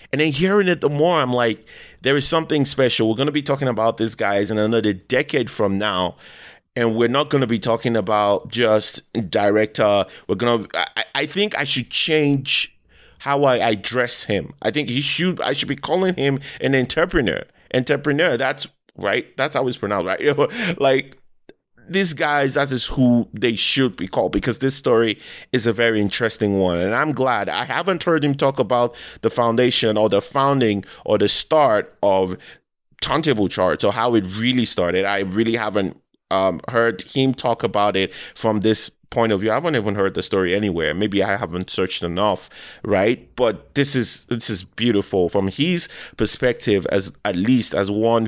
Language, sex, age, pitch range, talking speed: English, male, 30-49, 105-140 Hz, 185 wpm